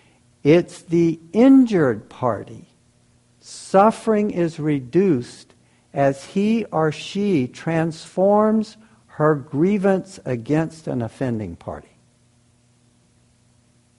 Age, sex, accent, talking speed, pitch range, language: 60-79, male, American, 75 wpm, 120-160 Hz, English